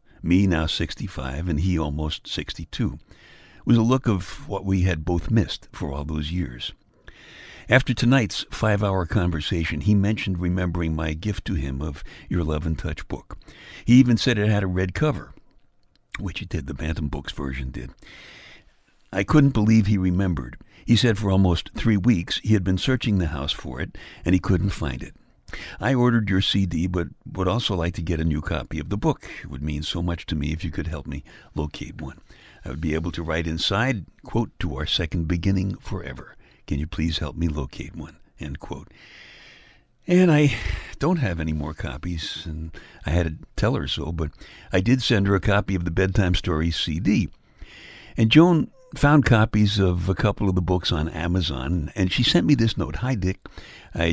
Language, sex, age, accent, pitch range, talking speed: English, male, 60-79, American, 80-105 Hz, 195 wpm